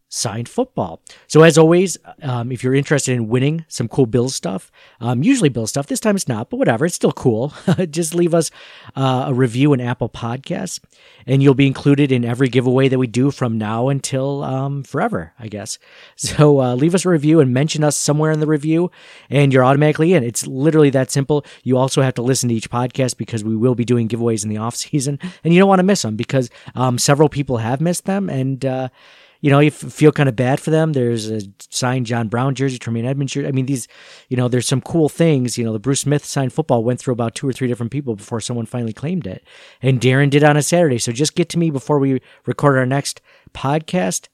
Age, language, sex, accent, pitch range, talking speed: 40-59, English, male, American, 125-155 Hz, 235 wpm